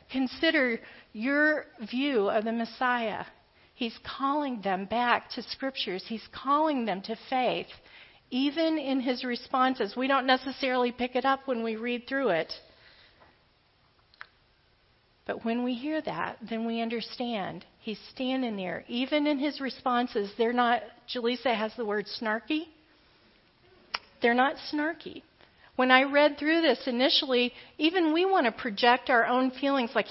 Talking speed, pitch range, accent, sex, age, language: 145 wpm, 225-275 Hz, American, female, 40-59, English